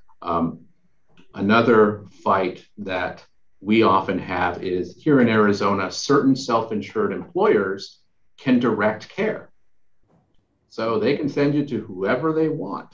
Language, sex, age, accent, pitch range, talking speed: English, male, 50-69, American, 95-120 Hz, 120 wpm